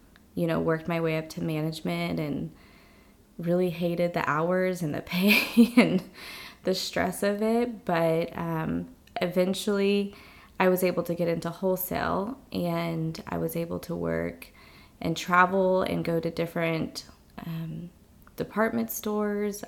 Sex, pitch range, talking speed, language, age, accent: female, 160-185 Hz, 140 wpm, English, 20-39, American